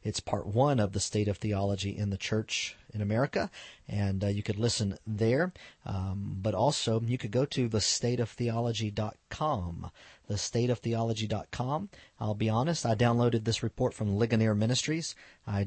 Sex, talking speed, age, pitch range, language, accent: male, 150 wpm, 40-59, 105-120 Hz, English, American